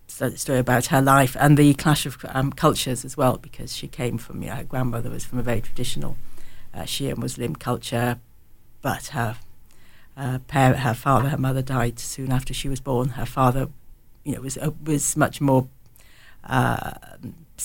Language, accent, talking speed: English, British, 175 wpm